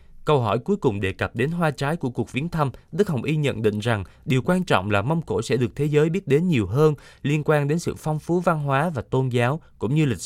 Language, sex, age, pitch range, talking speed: Vietnamese, male, 20-39, 110-155 Hz, 275 wpm